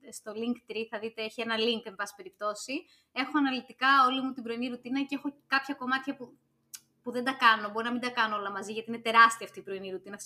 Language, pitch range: Greek, 210-265 Hz